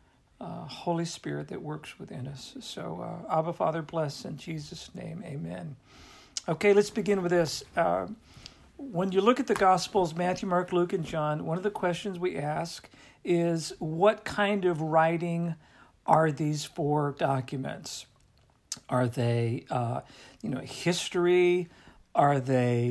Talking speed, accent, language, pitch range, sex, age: 145 wpm, American, English, 150-180 Hz, male, 50-69